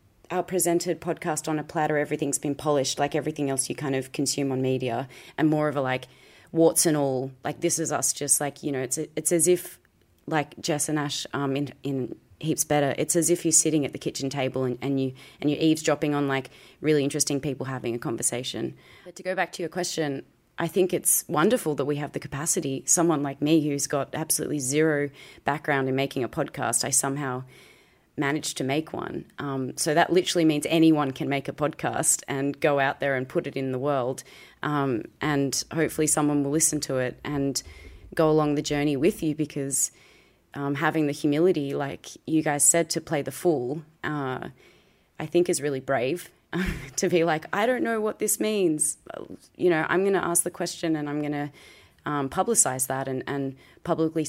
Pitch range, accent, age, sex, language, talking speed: 135-160 Hz, Australian, 30-49, female, English, 205 wpm